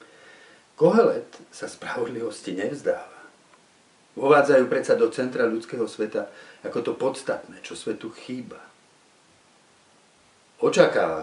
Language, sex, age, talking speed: Slovak, male, 50-69, 90 wpm